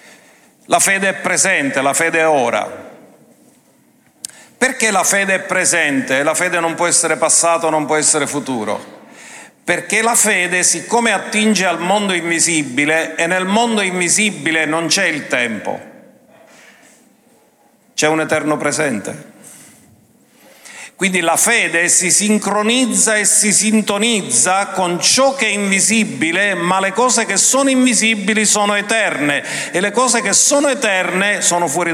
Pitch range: 175-225 Hz